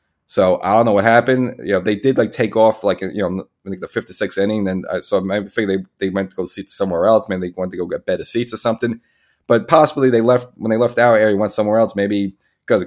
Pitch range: 95-115 Hz